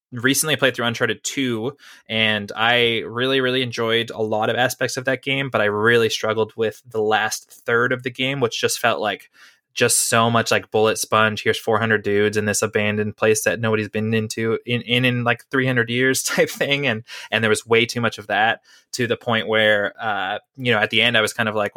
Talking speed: 225 wpm